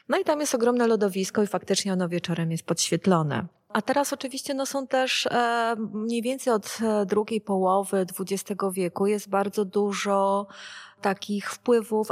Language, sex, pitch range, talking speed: Polish, female, 165-205 Hz, 150 wpm